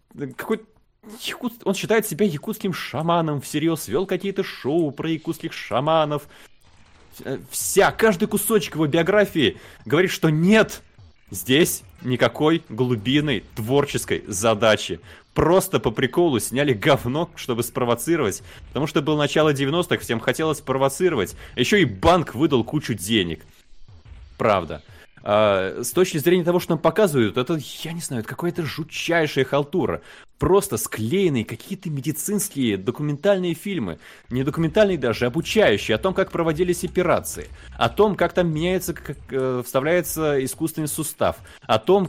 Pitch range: 135-185 Hz